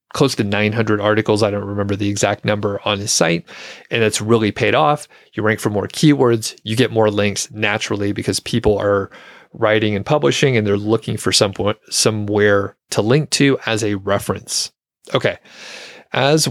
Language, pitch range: English, 105-125 Hz